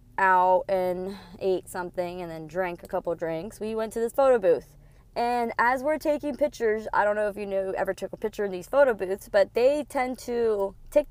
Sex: female